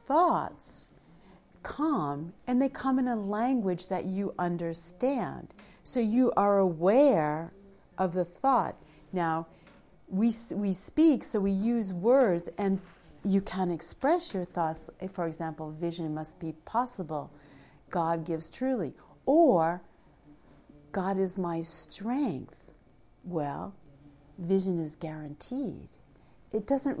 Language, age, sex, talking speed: English, 50-69, female, 115 wpm